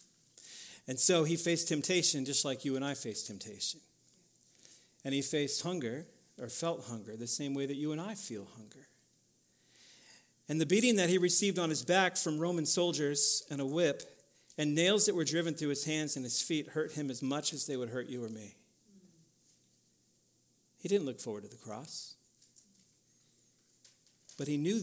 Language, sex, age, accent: English, male, 50-69, American